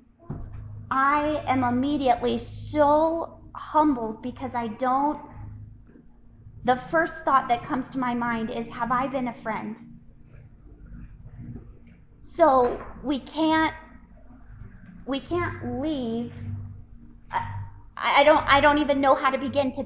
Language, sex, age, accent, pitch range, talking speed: English, female, 30-49, American, 235-275 Hz, 120 wpm